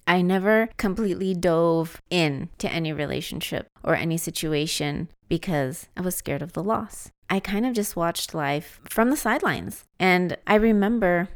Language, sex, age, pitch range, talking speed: English, female, 30-49, 160-195 Hz, 160 wpm